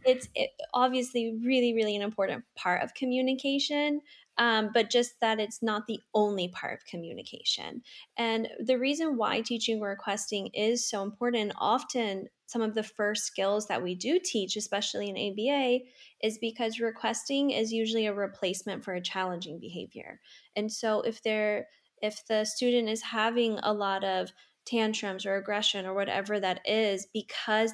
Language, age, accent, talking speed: English, 10-29, American, 160 wpm